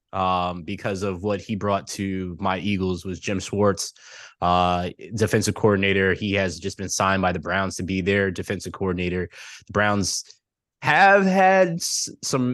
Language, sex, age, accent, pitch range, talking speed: English, male, 20-39, American, 95-115 Hz, 160 wpm